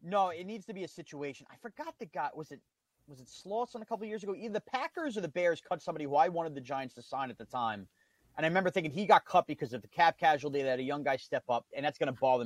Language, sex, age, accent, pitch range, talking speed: English, male, 30-49, American, 130-180 Hz, 300 wpm